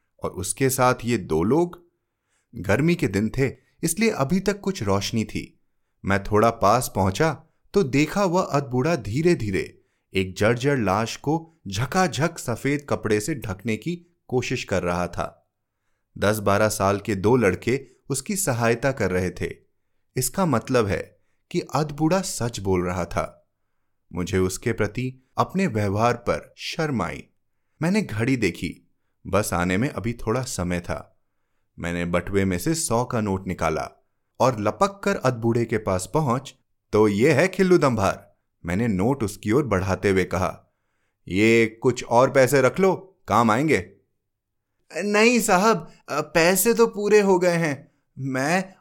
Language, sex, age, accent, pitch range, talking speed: Hindi, male, 30-49, native, 100-160 Hz, 150 wpm